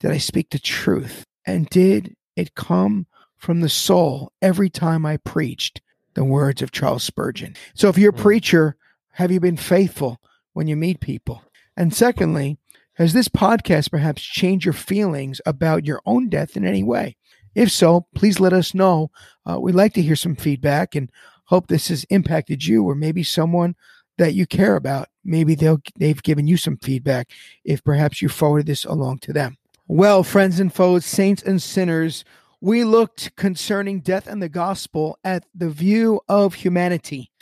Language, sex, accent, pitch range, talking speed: English, male, American, 155-190 Hz, 175 wpm